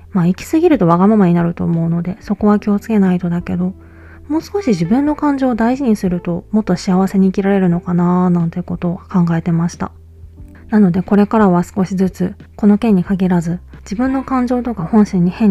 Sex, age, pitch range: female, 20-39, 175-215 Hz